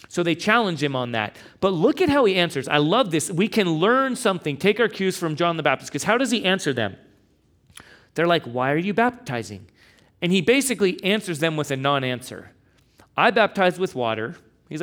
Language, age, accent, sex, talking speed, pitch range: English, 40-59, American, male, 205 wpm, 130-185 Hz